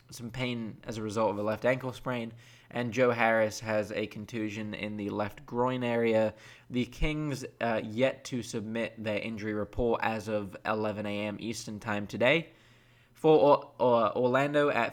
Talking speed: 170 wpm